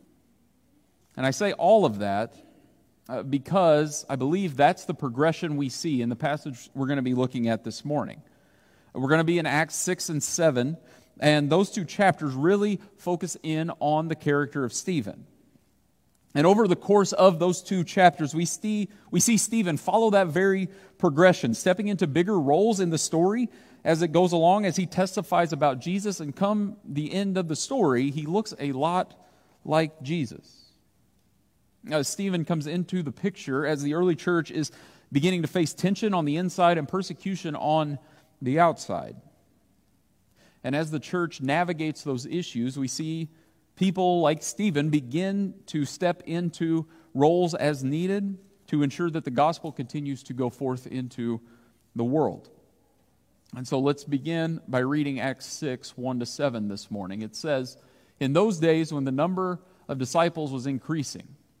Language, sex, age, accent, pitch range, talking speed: English, male, 40-59, American, 140-180 Hz, 165 wpm